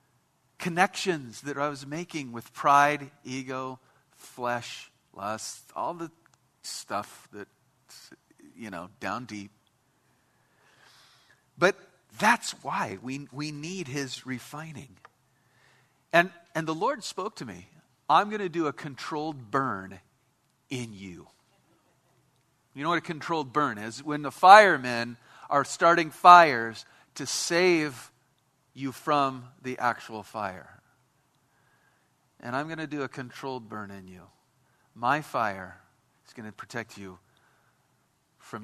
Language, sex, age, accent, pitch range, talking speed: English, male, 50-69, American, 125-160 Hz, 125 wpm